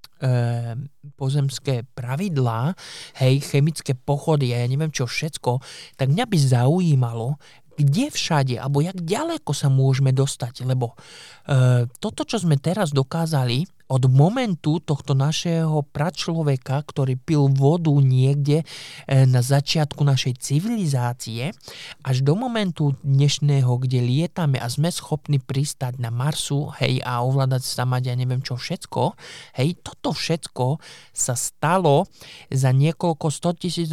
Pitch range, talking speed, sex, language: 130-155 Hz, 125 wpm, male, Slovak